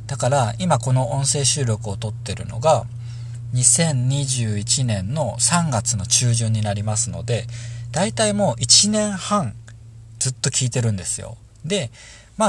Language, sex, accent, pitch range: Japanese, male, native, 110-135 Hz